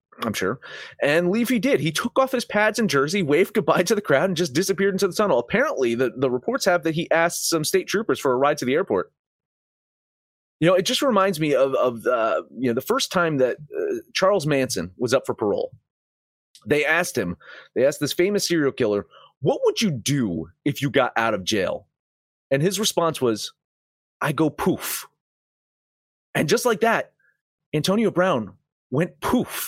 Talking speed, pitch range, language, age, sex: 190 wpm, 125-200 Hz, English, 30-49, male